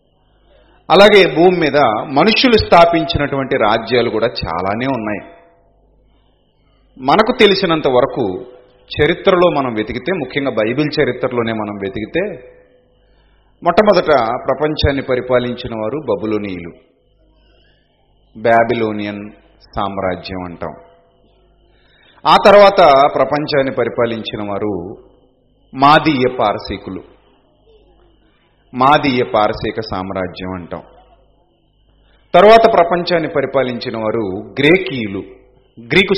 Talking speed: 75 wpm